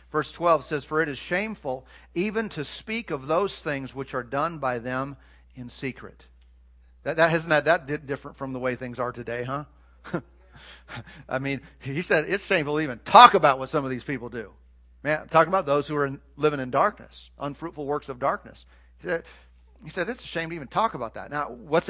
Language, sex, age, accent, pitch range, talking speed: English, male, 50-69, American, 115-150 Hz, 205 wpm